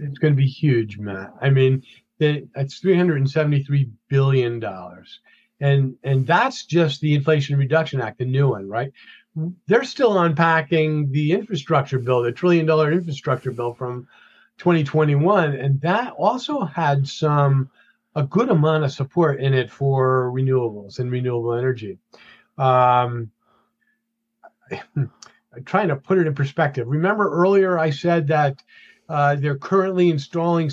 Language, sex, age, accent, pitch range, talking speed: English, male, 40-59, American, 130-170 Hz, 140 wpm